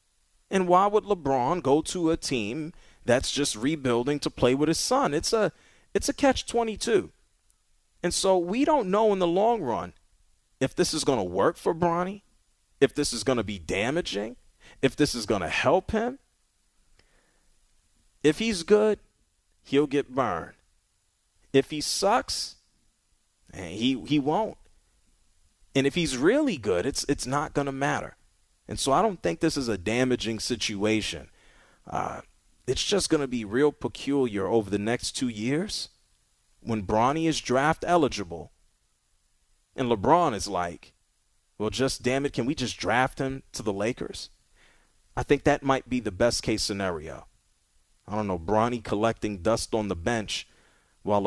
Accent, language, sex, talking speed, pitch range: American, English, male, 160 wpm, 105-150 Hz